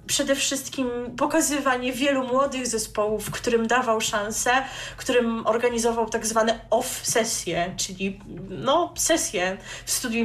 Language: Polish